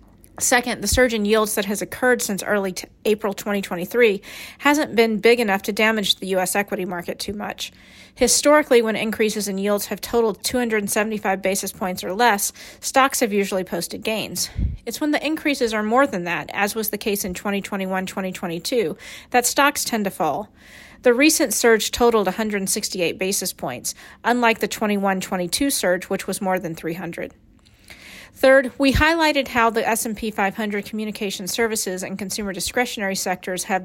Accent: American